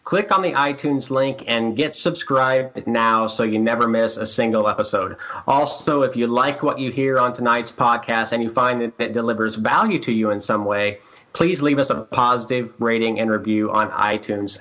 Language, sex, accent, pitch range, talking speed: English, male, American, 115-135 Hz, 195 wpm